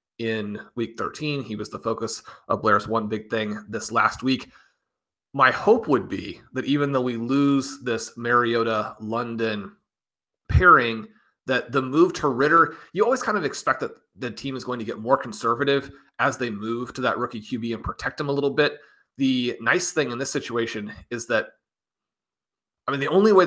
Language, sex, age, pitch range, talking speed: English, male, 30-49, 115-140 Hz, 185 wpm